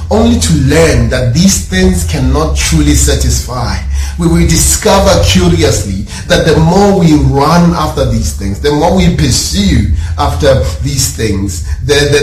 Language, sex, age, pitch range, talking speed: English, male, 30-49, 75-125 Hz, 140 wpm